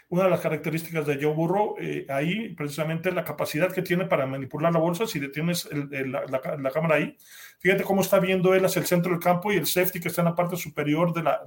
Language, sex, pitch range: English, male, 145-180 Hz